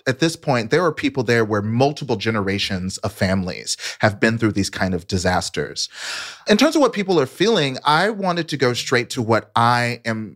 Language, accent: English, American